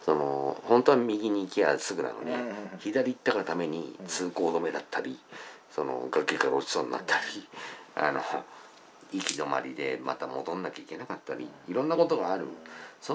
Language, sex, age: Japanese, male, 50-69